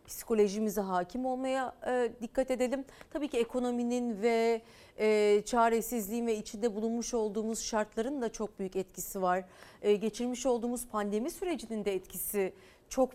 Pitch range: 210-305 Hz